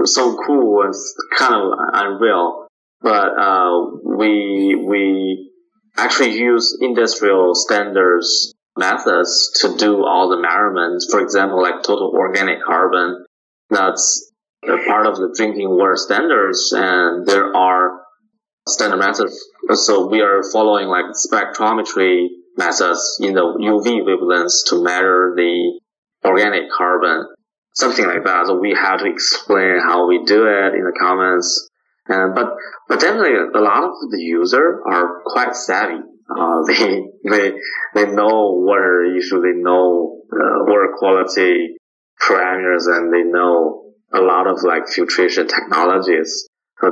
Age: 20-39